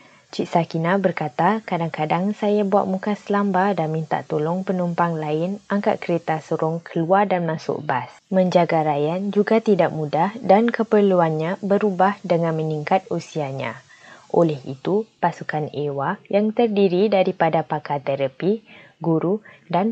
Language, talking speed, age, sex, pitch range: Malay, 125 wpm, 20-39, female, 160-200 Hz